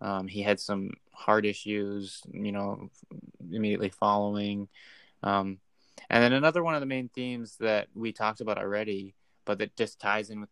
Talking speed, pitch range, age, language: 170 wpm, 100-110 Hz, 20-39, English